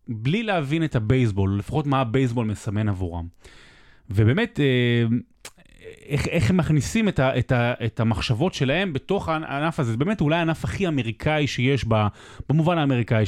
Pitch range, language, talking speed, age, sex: 110-160 Hz, Hebrew, 145 wpm, 30-49, male